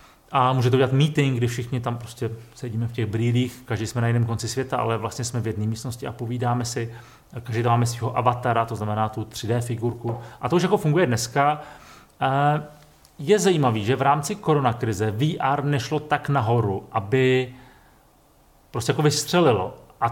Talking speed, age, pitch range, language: 170 wpm, 30-49, 115-140 Hz, Czech